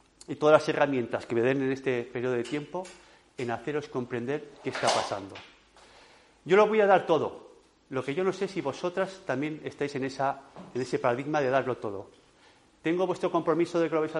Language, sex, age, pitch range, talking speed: Spanish, male, 40-59, 140-215 Hz, 205 wpm